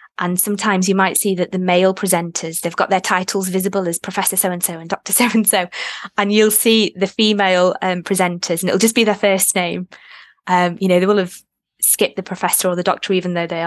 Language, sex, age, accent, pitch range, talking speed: English, female, 20-39, British, 180-205 Hz, 215 wpm